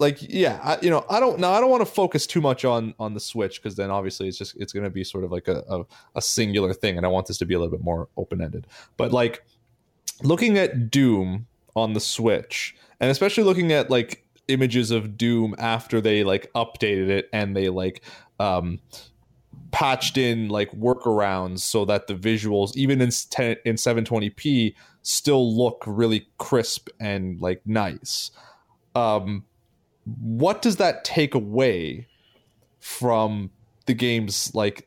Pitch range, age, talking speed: 105-125 Hz, 20-39, 175 wpm